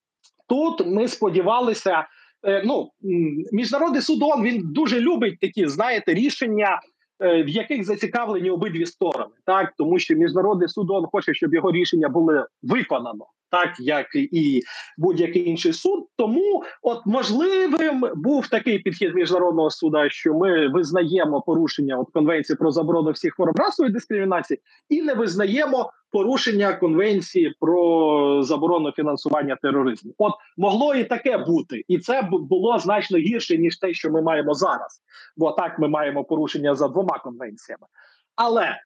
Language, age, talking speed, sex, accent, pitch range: Ukrainian, 30-49, 140 wpm, male, native, 165-245 Hz